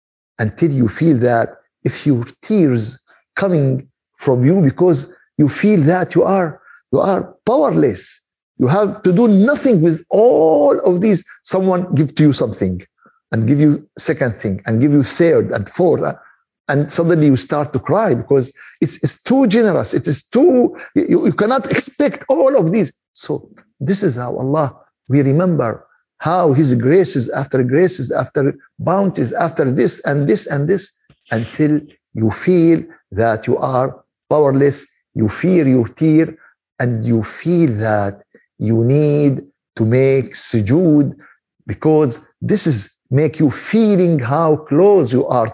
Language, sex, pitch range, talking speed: Arabic, male, 125-180 Hz, 150 wpm